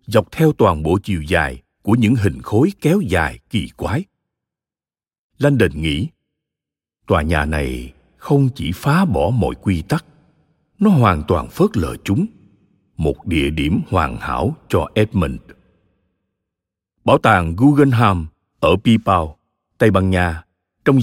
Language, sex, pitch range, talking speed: Vietnamese, male, 90-130 Hz, 135 wpm